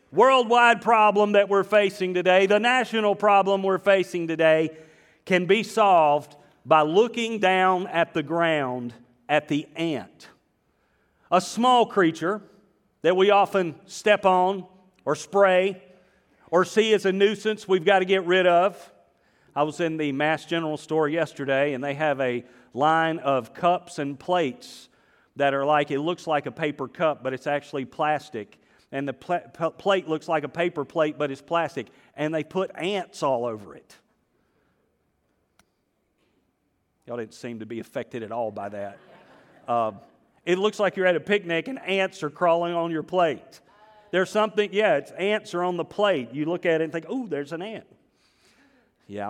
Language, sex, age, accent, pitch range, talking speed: English, male, 40-59, American, 145-195 Hz, 170 wpm